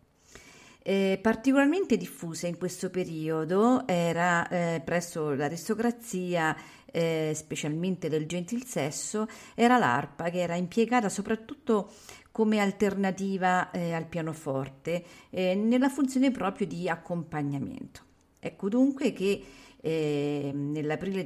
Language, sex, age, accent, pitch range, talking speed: Italian, female, 40-59, native, 155-210 Hz, 105 wpm